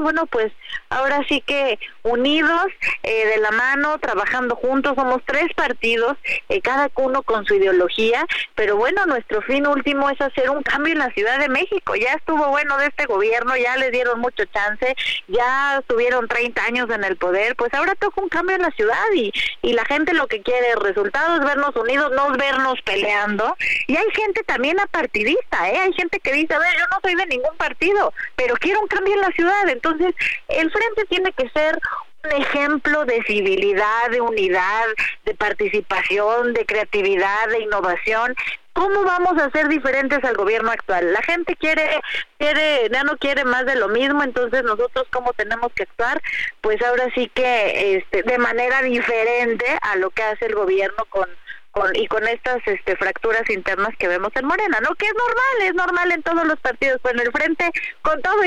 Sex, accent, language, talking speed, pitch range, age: female, Mexican, Spanish, 195 wpm, 230-335 Hz, 30-49